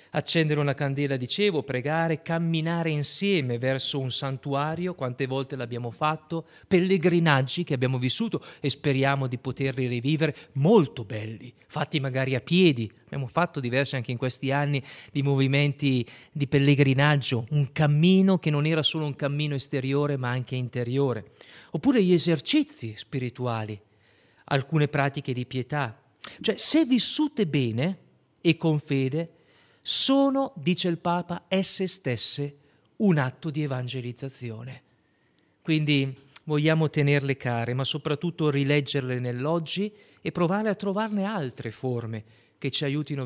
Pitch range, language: 130-170 Hz, Italian